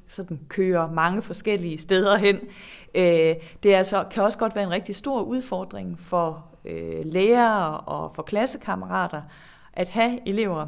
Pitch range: 170-215 Hz